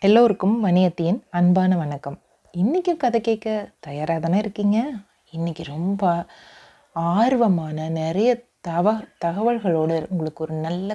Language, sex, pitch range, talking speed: Tamil, female, 165-225 Hz, 105 wpm